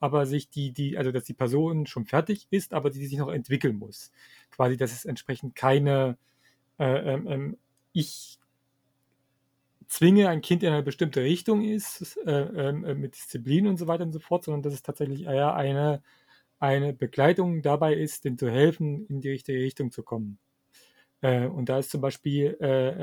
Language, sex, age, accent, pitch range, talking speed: German, male, 40-59, German, 135-160 Hz, 185 wpm